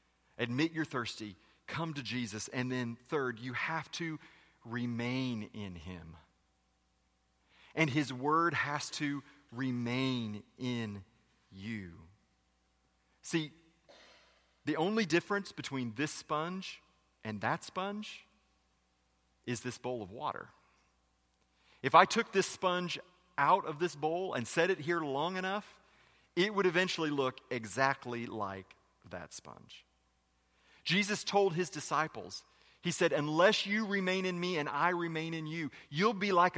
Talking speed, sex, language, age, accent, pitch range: 130 wpm, male, English, 30-49, American, 110-175 Hz